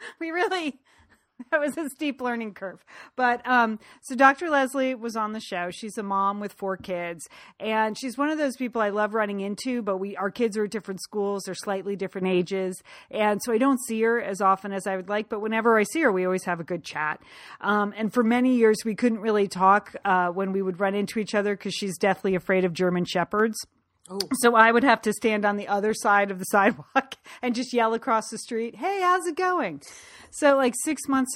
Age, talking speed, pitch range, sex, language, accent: 40-59, 230 wpm, 185-225 Hz, female, English, American